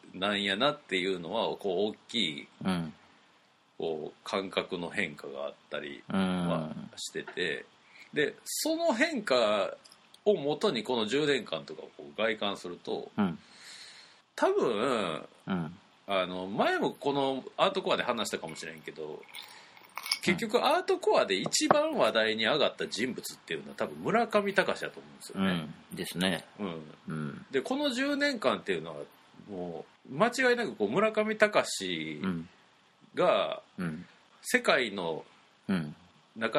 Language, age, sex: Japanese, 40-59, male